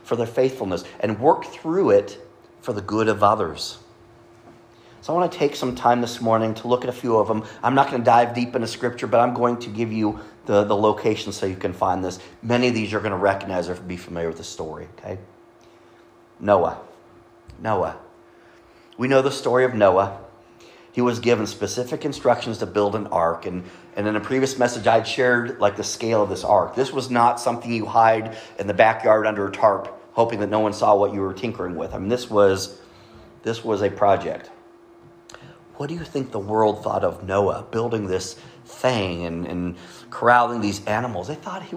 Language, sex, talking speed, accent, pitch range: English, male, 205 wpm, American, 105-125 Hz